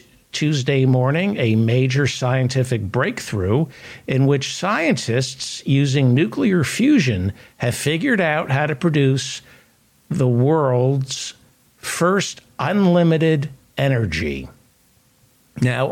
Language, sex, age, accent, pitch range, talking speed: English, male, 60-79, American, 115-150 Hz, 90 wpm